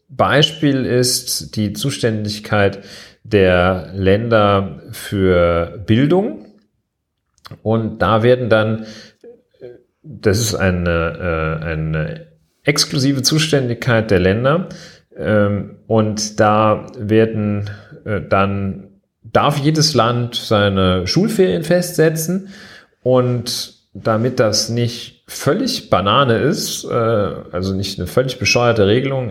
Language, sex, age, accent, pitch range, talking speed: German, male, 40-59, German, 100-125 Hz, 90 wpm